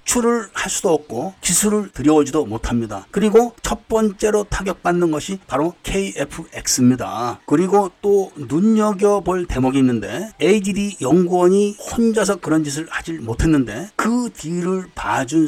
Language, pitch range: Korean, 130-185 Hz